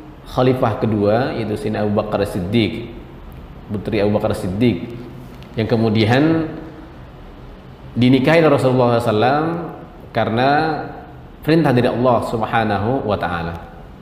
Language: English